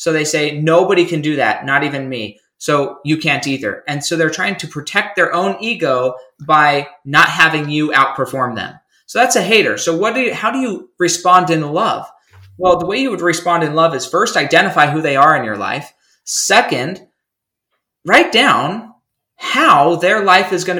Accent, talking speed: American, 195 wpm